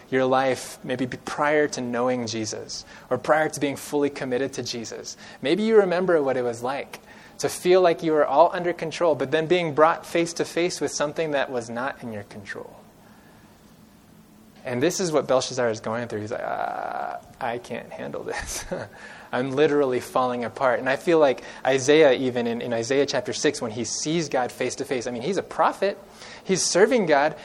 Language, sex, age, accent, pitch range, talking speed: English, male, 20-39, American, 125-165 Hz, 195 wpm